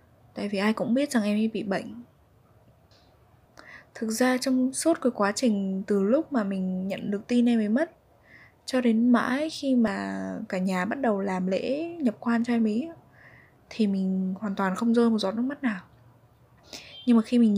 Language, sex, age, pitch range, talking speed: Vietnamese, female, 10-29, 190-235 Hz, 200 wpm